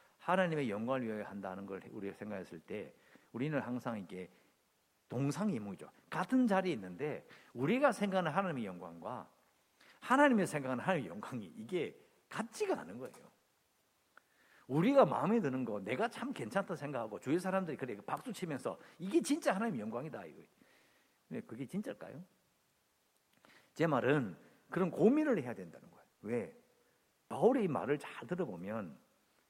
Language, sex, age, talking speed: English, male, 50-69, 120 wpm